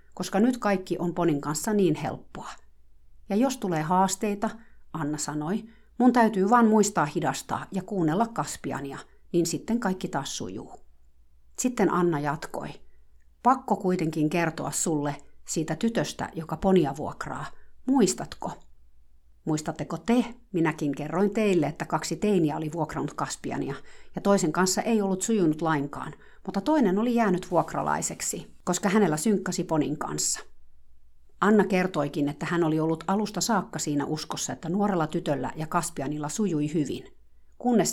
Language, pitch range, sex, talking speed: Finnish, 145-195 Hz, female, 135 wpm